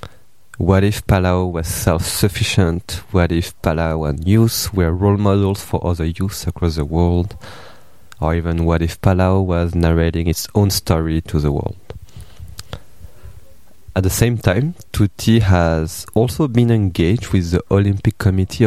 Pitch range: 85-105 Hz